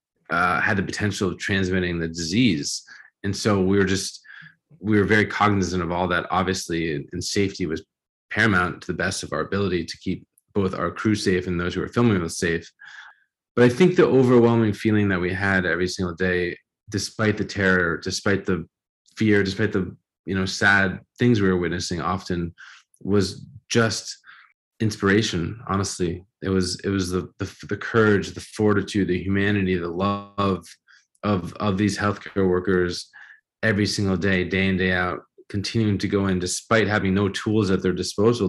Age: 20-39